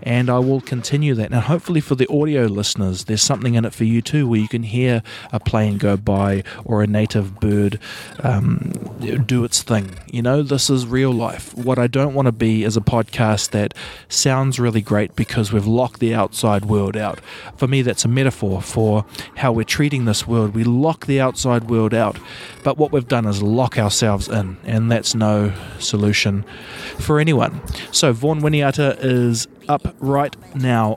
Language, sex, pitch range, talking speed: English, male, 105-125 Hz, 190 wpm